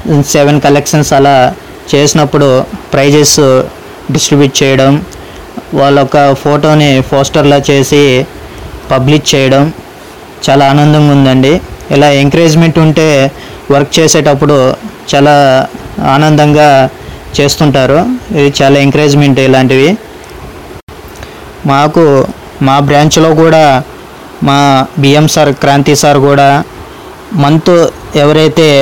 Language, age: English, 20-39